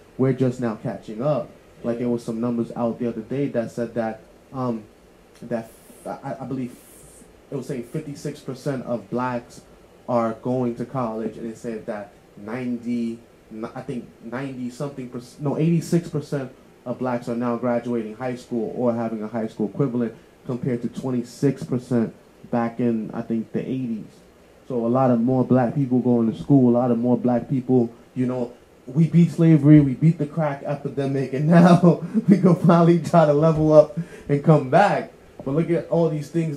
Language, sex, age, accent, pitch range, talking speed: English, male, 20-39, American, 120-140 Hz, 180 wpm